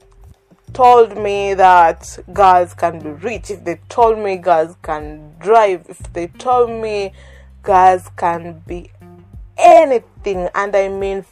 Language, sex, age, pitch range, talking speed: English, female, 20-39, 170-220 Hz, 135 wpm